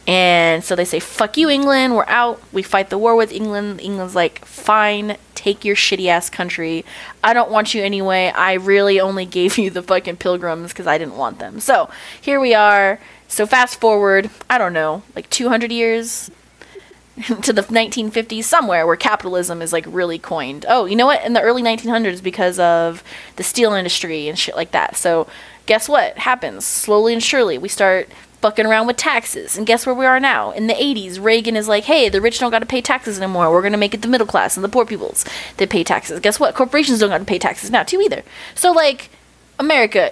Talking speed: 215 wpm